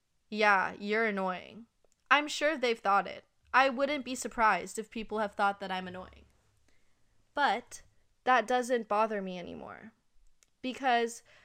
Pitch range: 200-240 Hz